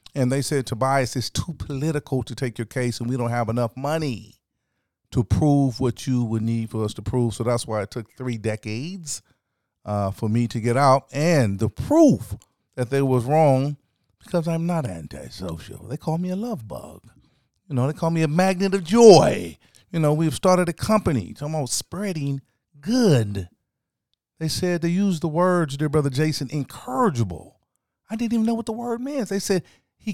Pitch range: 115-165 Hz